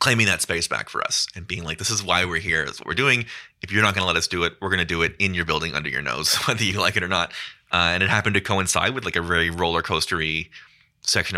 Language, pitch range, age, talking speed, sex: English, 85-100 Hz, 20-39, 300 wpm, male